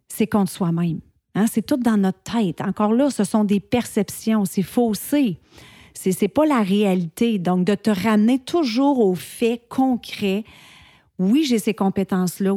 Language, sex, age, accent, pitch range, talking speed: French, female, 40-59, Canadian, 195-240 Hz, 160 wpm